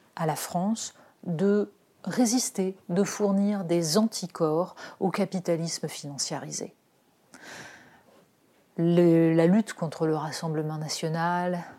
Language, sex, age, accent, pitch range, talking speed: French, female, 30-49, French, 170-215 Hz, 95 wpm